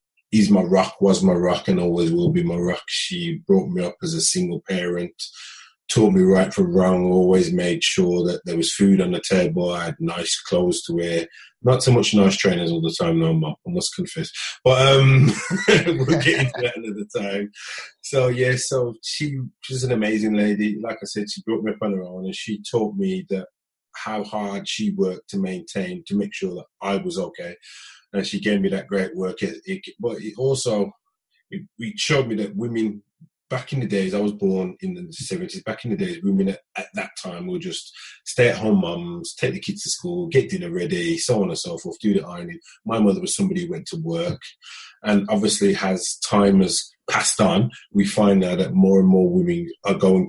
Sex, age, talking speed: male, 20-39, 210 wpm